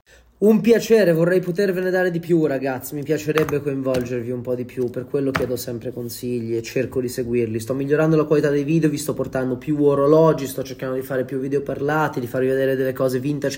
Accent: native